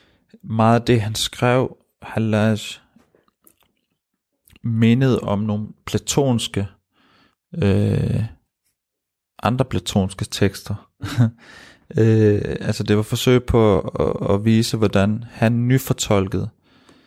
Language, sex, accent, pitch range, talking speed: Danish, male, native, 100-120 Hz, 95 wpm